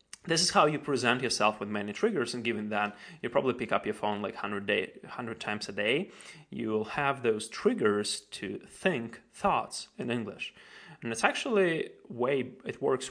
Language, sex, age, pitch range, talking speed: English, male, 30-49, 105-120 Hz, 190 wpm